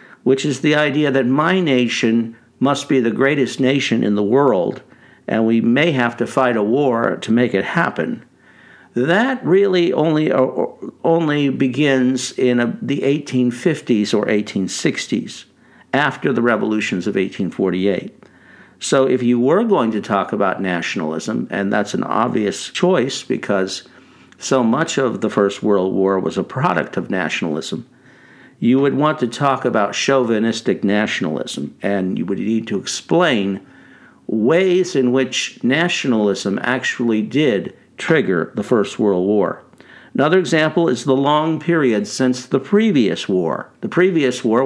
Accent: American